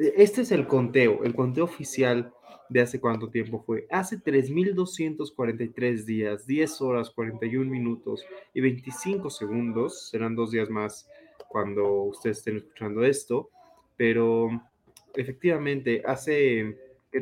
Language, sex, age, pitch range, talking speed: Spanish, male, 20-39, 110-145 Hz, 120 wpm